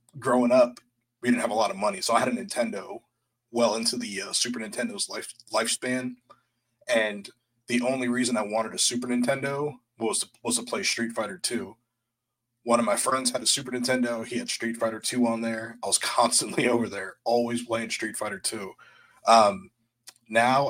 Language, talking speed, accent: English, 185 wpm, American